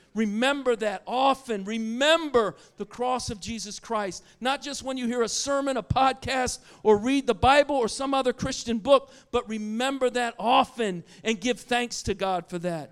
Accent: American